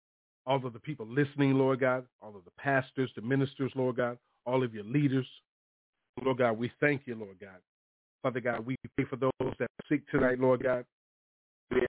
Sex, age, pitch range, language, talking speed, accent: male, 40-59, 120-140 Hz, English, 195 wpm, American